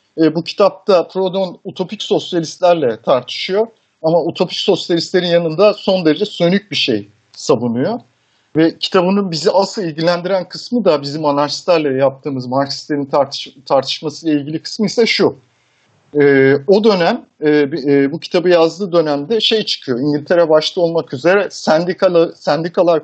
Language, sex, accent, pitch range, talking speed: Turkish, male, native, 145-190 Hz, 130 wpm